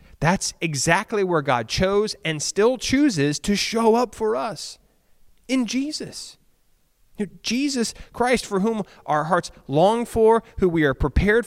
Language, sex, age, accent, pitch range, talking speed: English, male, 30-49, American, 135-205 Hz, 140 wpm